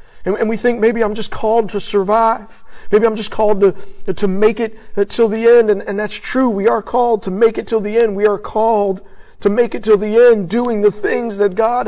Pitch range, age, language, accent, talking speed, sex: 170-220 Hz, 50-69, English, American, 235 wpm, male